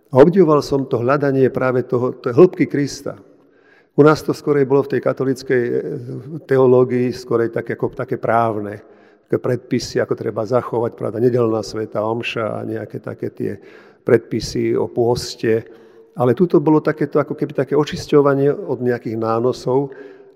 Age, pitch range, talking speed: 50-69, 115-140 Hz, 145 wpm